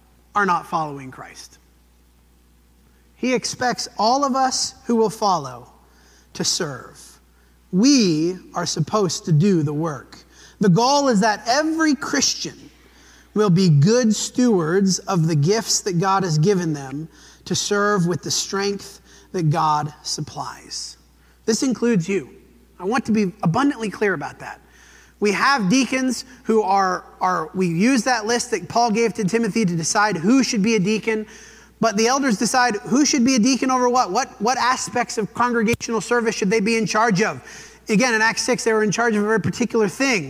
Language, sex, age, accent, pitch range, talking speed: English, male, 30-49, American, 165-235 Hz, 175 wpm